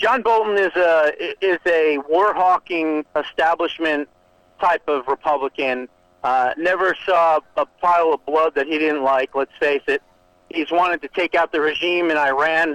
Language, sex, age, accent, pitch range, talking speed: English, male, 40-59, American, 155-210 Hz, 160 wpm